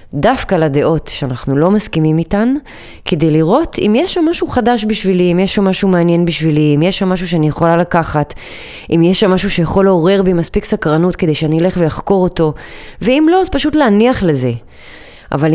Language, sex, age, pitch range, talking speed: Hebrew, female, 20-39, 155-200 Hz, 180 wpm